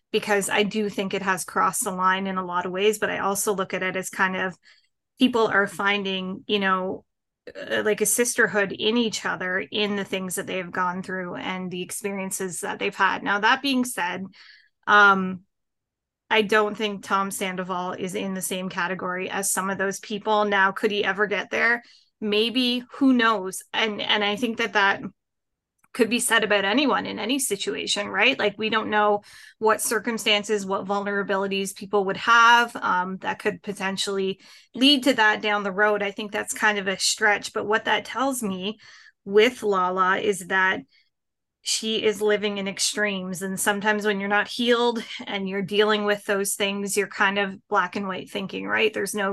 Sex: female